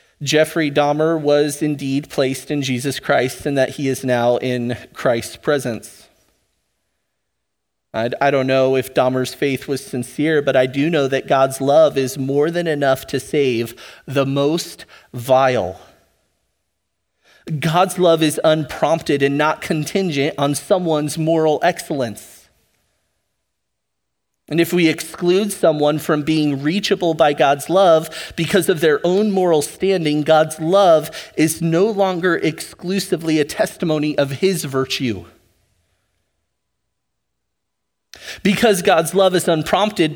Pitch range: 130-175 Hz